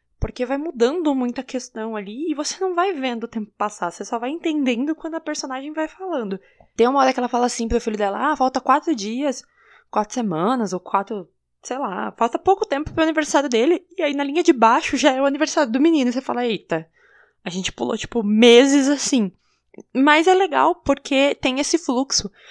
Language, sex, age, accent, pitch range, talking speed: Portuguese, female, 20-39, Brazilian, 210-280 Hz, 210 wpm